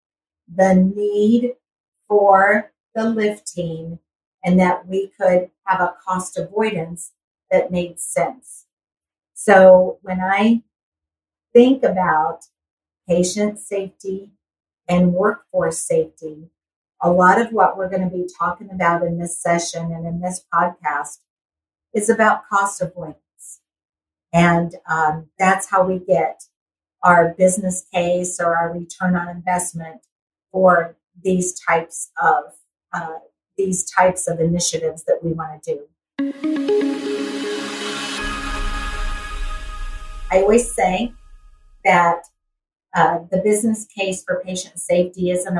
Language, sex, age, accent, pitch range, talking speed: English, female, 50-69, American, 165-195 Hz, 115 wpm